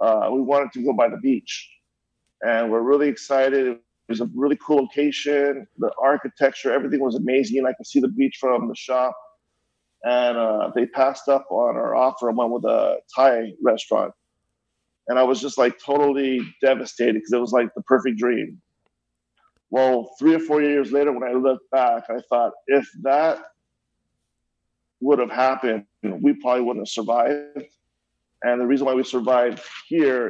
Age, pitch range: 40-59, 120-140 Hz